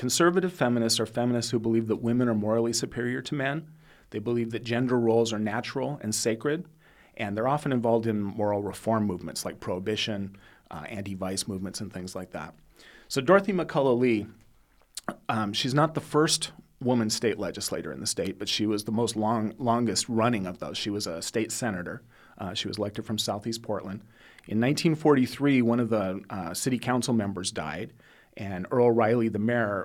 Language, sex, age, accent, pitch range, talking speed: English, male, 40-59, American, 105-125 Hz, 185 wpm